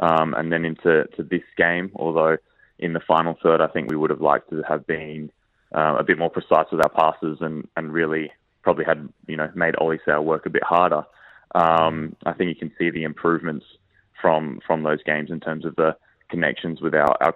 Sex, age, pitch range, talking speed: male, 20-39, 80-85 Hz, 215 wpm